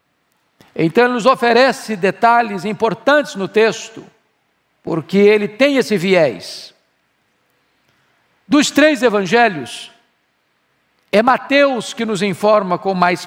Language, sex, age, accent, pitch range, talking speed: Portuguese, male, 50-69, Brazilian, 210-260 Hz, 105 wpm